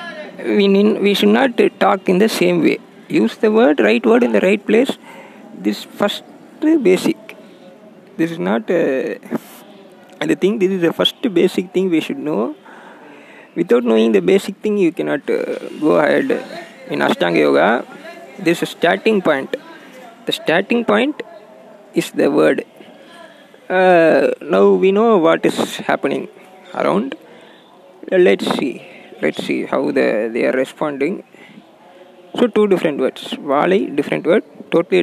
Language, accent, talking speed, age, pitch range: Tamil, native, 145 wpm, 20-39, 170-220 Hz